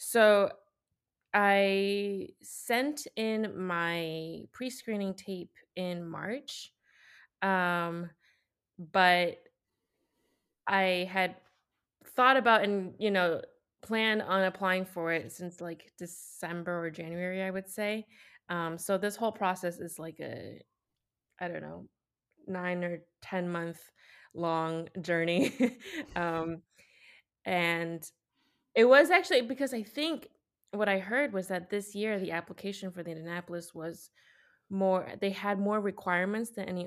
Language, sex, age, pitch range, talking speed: English, female, 20-39, 170-205 Hz, 125 wpm